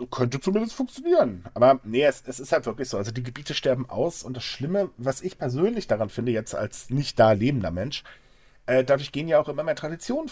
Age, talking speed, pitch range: 40-59, 220 wpm, 120-170 Hz